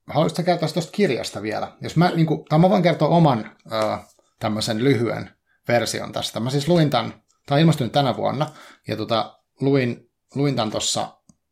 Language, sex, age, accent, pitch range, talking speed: Finnish, male, 30-49, native, 110-140 Hz, 135 wpm